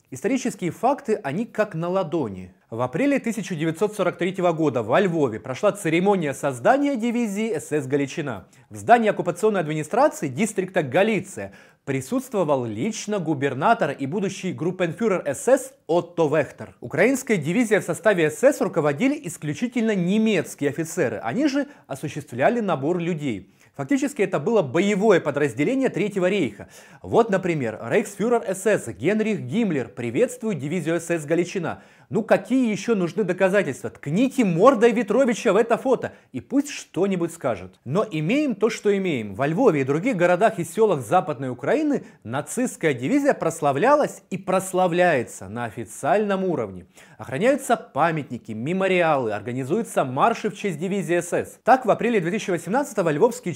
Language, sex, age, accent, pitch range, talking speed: Russian, male, 30-49, native, 155-230 Hz, 130 wpm